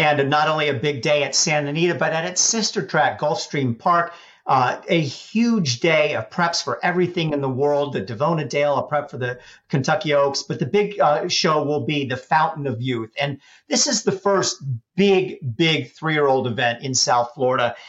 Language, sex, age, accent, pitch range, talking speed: English, male, 50-69, American, 145-185 Hz, 200 wpm